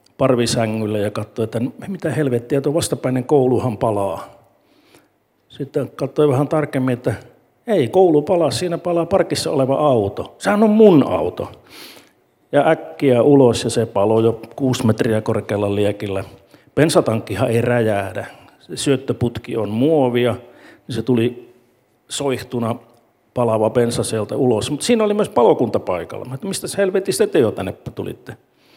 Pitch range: 110-140 Hz